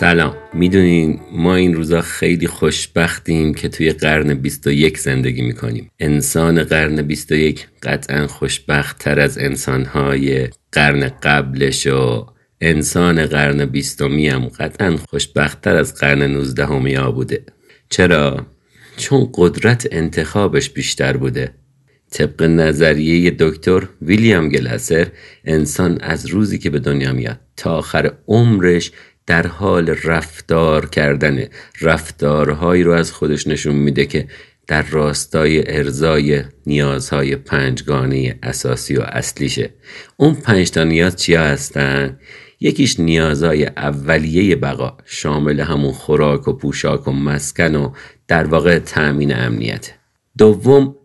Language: Persian